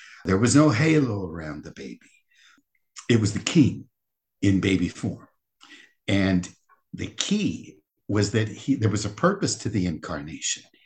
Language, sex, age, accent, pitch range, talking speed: English, male, 60-79, American, 100-120 Hz, 150 wpm